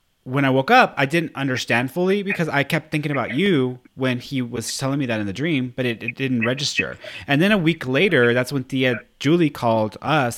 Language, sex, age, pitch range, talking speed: English, male, 30-49, 115-150 Hz, 225 wpm